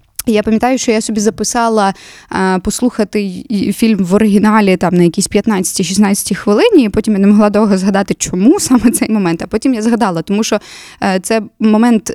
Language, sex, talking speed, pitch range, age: Ukrainian, female, 170 wpm, 190-230 Hz, 20-39